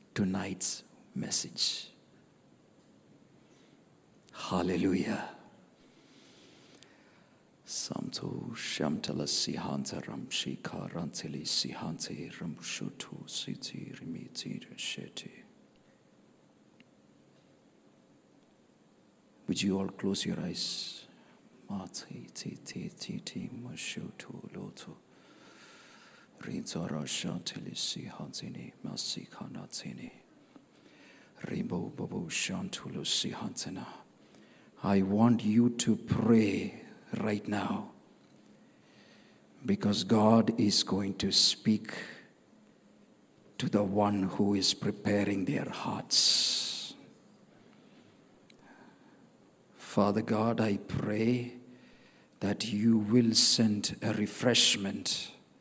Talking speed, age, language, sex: 95 wpm, 50-69, Malayalam, male